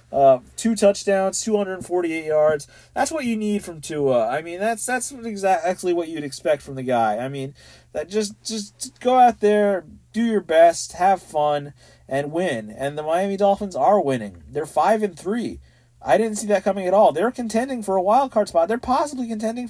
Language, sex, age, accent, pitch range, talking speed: English, male, 30-49, American, 125-205 Hz, 205 wpm